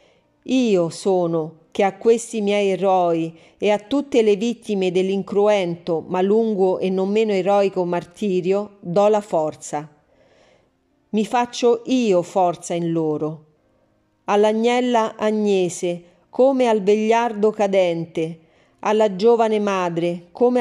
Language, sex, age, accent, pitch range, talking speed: Italian, female, 40-59, native, 175-220 Hz, 115 wpm